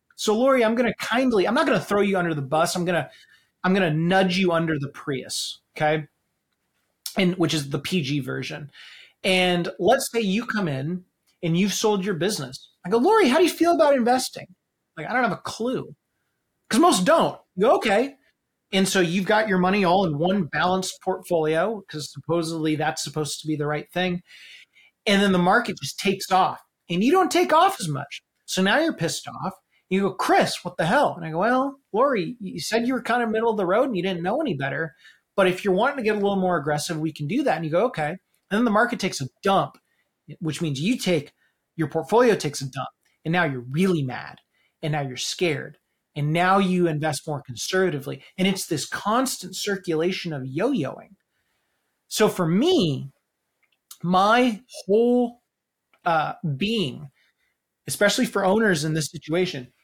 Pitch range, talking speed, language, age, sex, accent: 155-210 Hz, 200 wpm, English, 30-49, male, American